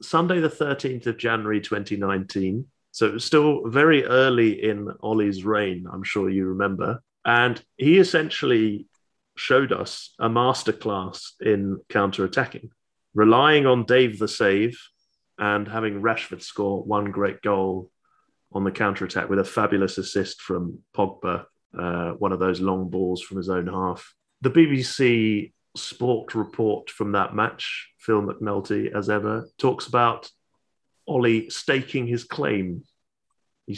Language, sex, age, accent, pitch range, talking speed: English, male, 30-49, British, 95-130 Hz, 140 wpm